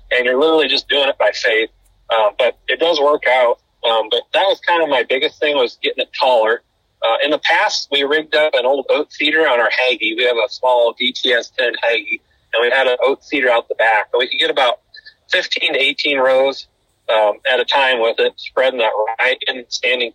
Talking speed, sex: 230 wpm, male